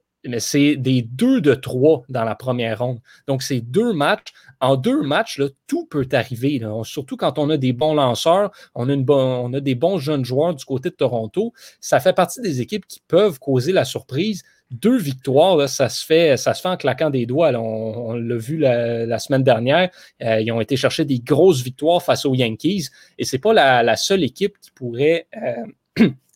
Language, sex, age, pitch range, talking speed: French, male, 30-49, 125-160 Hz, 225 wpm